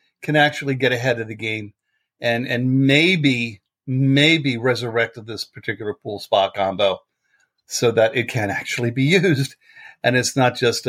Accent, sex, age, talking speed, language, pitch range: American, male, 50-69, 155 wpm, English, 115-165 Hz